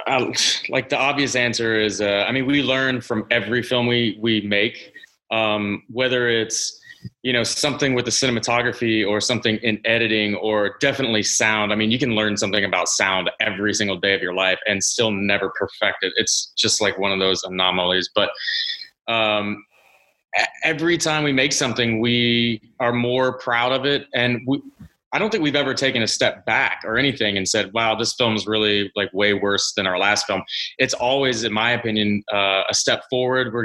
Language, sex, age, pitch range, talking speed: English, male, 20-39, 105-130 Hz, 195 wpm